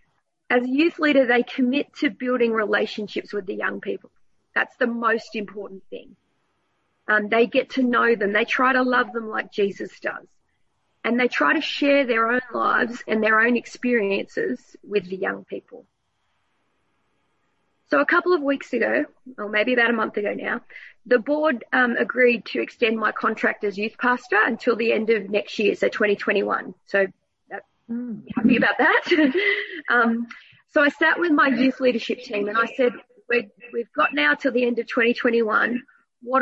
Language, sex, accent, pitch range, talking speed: English, female, Australian, 220-265 Hz, 175 wpm